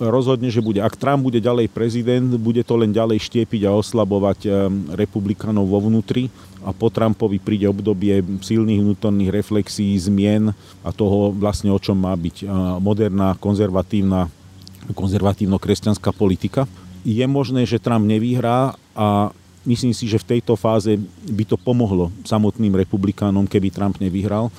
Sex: male